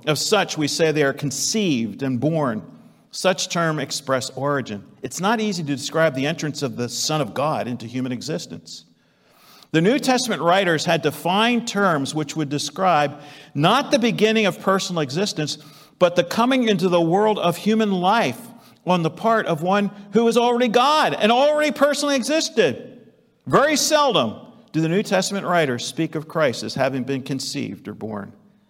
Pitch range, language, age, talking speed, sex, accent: 135-195 Hz, English, 50-69, 170 wpm, male, American